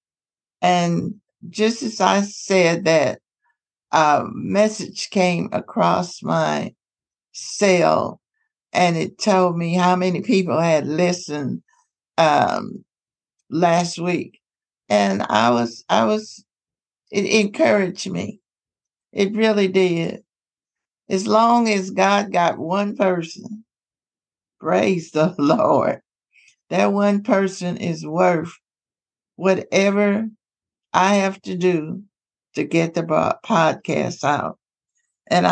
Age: 60-79